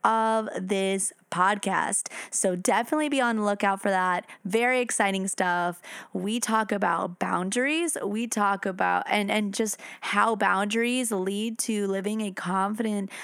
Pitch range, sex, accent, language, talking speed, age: 195-235 Hz, female, American, English, 140 wpm, 20-39